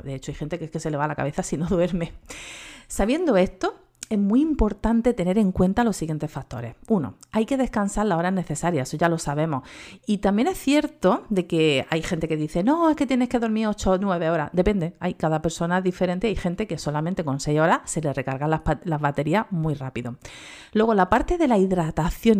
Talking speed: 225 wpm